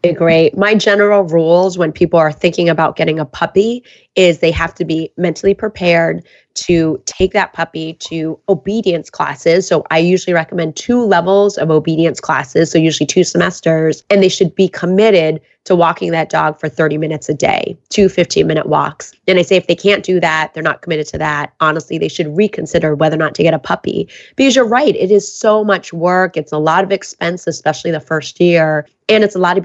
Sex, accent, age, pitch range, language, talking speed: female, American, 30-49, 160-200 Hz, English, 210 wpm